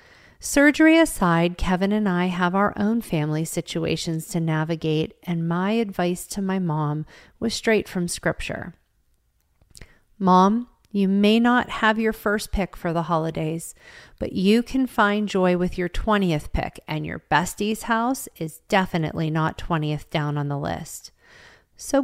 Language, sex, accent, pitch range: English, female, American, 165-215 Hz